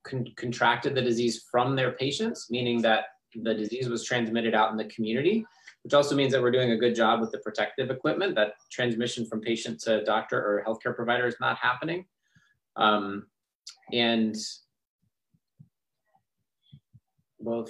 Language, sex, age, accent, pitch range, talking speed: English, male, 30-49, American, 115-170 Hz, 155 wpm